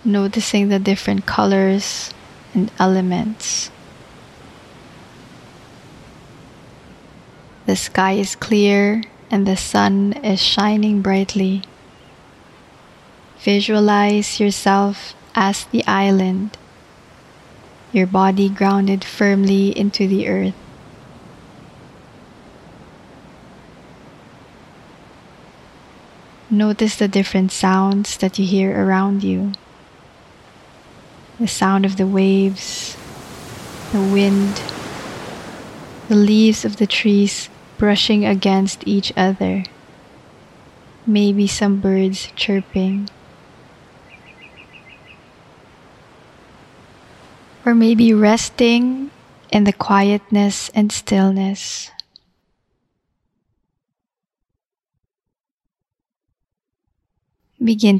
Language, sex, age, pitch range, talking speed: English, female, 20-39, 195-210 Hz, 70 wpm